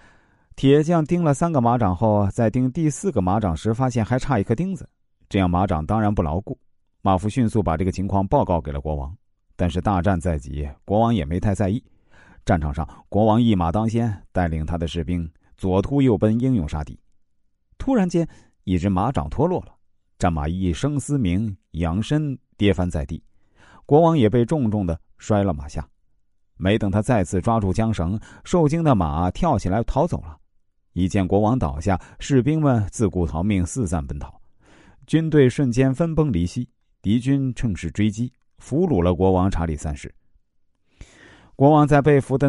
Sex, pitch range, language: male, 90-125 Hz, Chinese